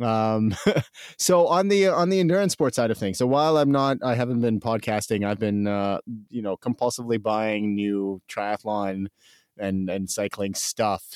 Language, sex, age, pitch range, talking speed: English, male, 30-49, 100-115 Hz, 170 wpm